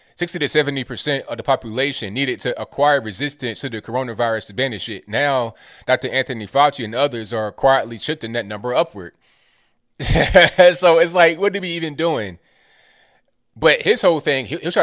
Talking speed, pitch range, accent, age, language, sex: 165 wpm, 115-145 Hz, American, 20-39, English, male